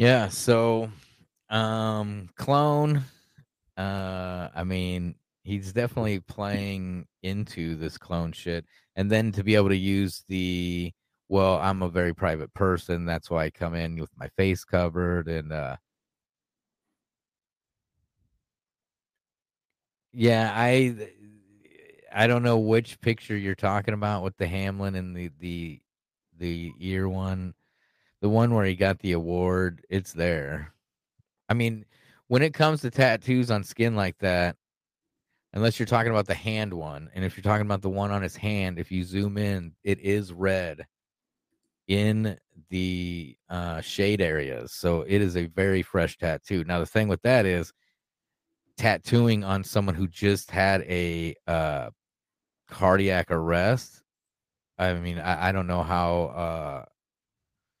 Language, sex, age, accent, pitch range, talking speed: English, male, 30-49, American, 90-105 Hz, 145 wpm